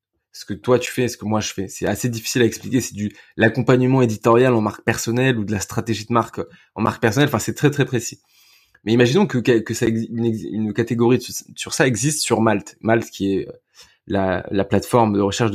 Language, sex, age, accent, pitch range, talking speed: French, male, 20-39, French, 110-135 Hz, 220 wpm